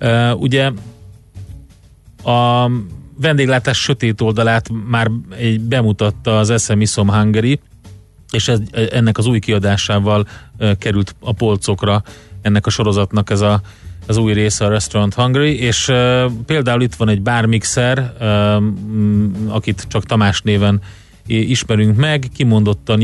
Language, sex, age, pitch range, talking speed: Hungarian, male, 30-49, 100-115 Hz, 120 wpm